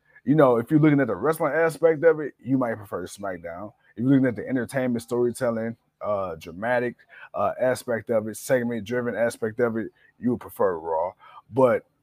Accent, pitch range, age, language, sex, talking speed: American, 110-140 Hz, 30-49, English, male, 185 wpm